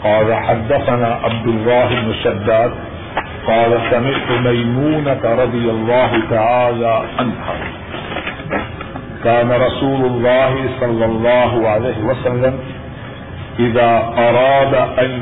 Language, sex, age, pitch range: Urdu, male, 50-69, 115-135 Hz